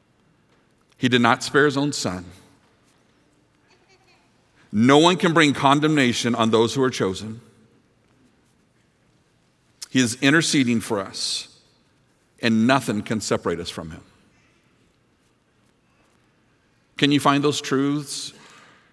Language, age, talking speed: English, 50-69, 110 wpm